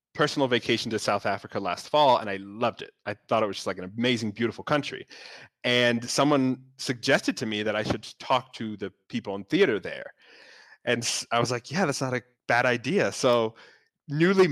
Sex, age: male, 20-39